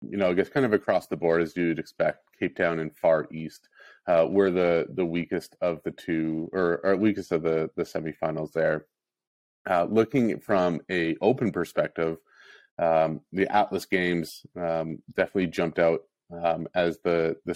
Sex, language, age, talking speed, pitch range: male, English, 30-49, 175 wpm, 80-95 Hz